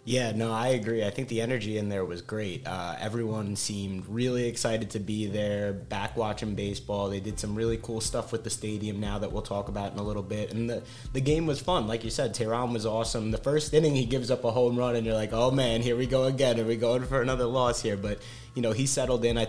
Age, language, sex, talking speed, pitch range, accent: 20-39, English, male, 260 wpm, 100-120 Hz, American